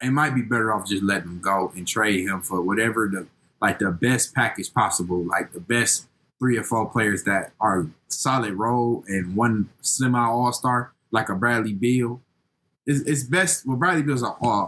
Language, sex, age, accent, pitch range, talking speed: English, male, 20-39, American, 105-140 Hz, 190 wpm